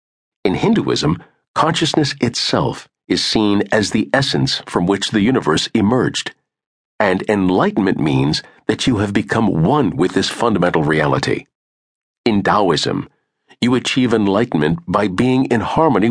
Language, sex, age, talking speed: English, male, 50-69, 130 wpm